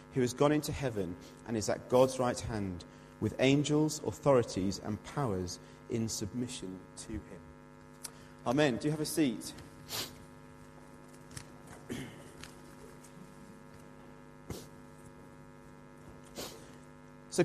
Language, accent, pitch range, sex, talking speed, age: English, British, 115-150 Hz, male, 95 wpm, 30-49